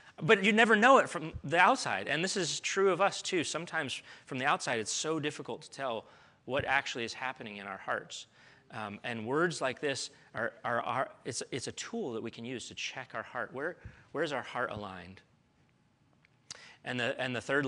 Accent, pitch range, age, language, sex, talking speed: American, 110-150 Hz, 30-49, English, male, 210 wpm